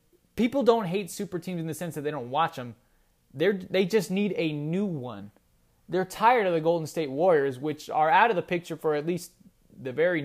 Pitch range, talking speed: 135-195 Hz, 215 wpm